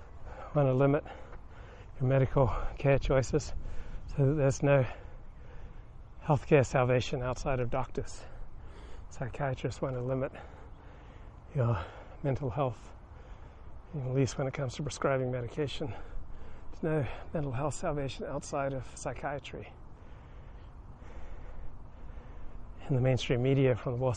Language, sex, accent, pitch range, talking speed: English, male, American, 95-135 Hz, 115 wpm